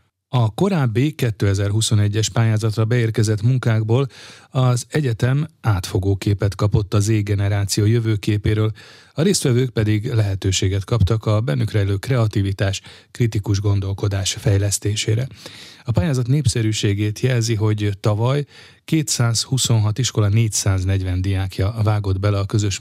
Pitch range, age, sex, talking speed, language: 100-120 Hz, 30-49, male, 105 wpm, Hungarian